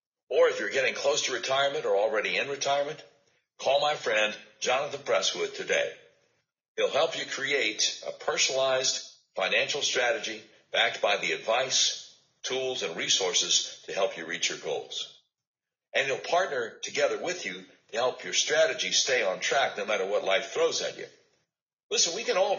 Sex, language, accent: male, English, American